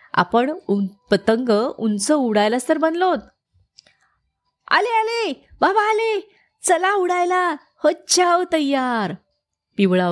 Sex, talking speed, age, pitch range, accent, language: female, 85 wpm, 30-49, 190-295 Hz, native, Marathi